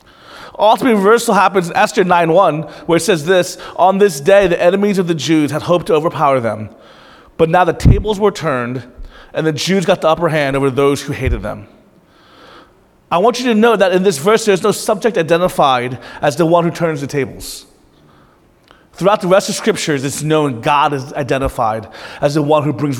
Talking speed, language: 200 wpm, English